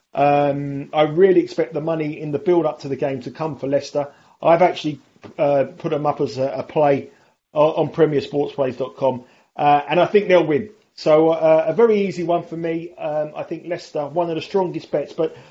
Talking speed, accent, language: 195 wpm, British, English